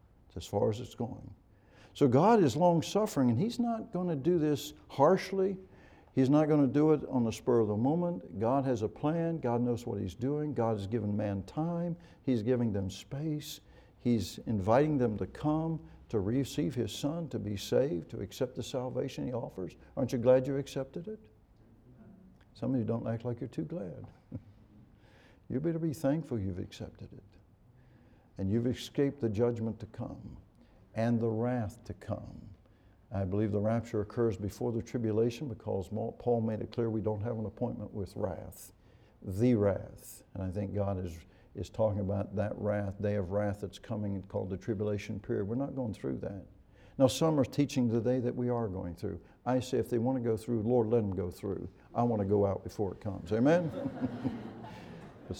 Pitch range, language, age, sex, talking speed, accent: 105-130 Hz, English, 60-79, male, 195 wpm, American